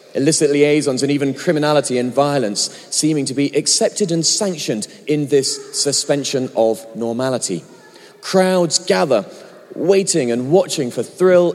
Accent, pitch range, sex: British, 130-175 Hz, male